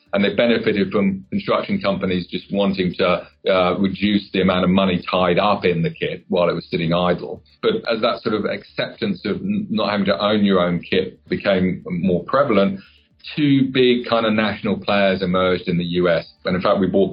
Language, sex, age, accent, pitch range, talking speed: English, male, 40-59, British, 90-115 Hz, 200 wpm